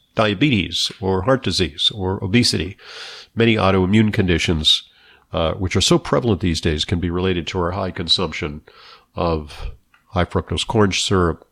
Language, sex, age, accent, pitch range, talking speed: English, male, 50-69, American, 90-115 Hz, 145 wpm